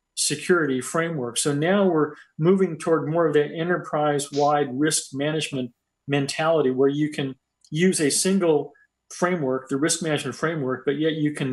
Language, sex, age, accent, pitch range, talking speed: English, male, 40-59, American, 140-160 Hz, 155 wpm